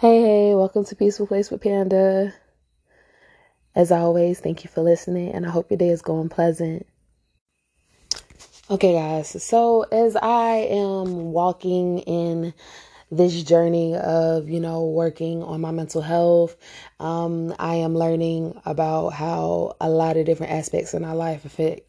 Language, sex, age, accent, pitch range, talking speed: English, female, 20-39, American, 165-195 Hz, 150 wpm